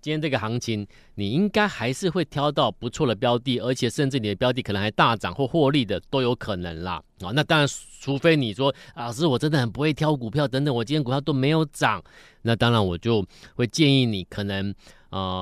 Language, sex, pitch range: Chinese, male, 105-135 Hz